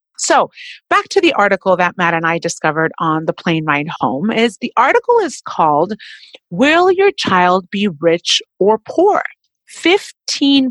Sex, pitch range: female, 180-295 Hz